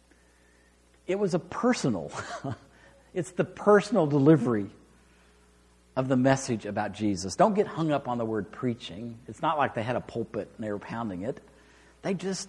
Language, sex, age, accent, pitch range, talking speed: English, male, 50-69, American, 105-160 Hz, 170 wpm